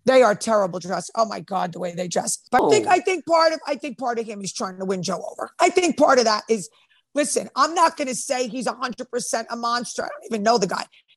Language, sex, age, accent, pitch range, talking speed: English, female, 40-59, American, 210-285 Hz, 275 wpm